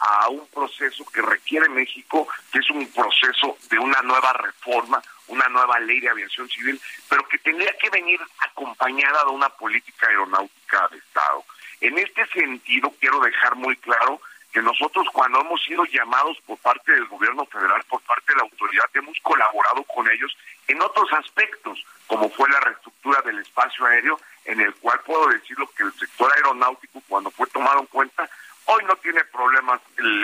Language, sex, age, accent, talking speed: Spanish, male, 50-69, Mexican, 175 wpm